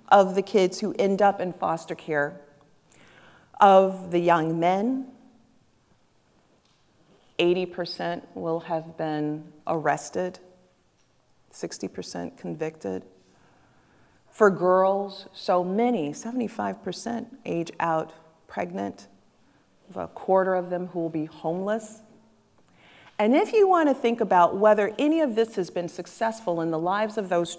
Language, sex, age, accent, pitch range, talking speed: English, female, 40-59, American, 170-220 Hz, 115 wpm